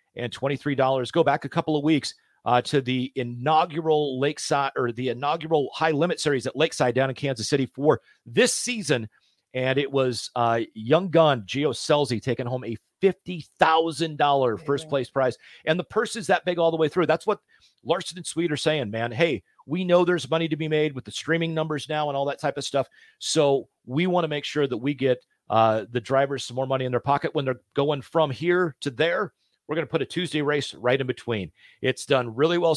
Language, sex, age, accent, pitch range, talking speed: English, male, 40-59, American, 130-165 Hz, 220 wpm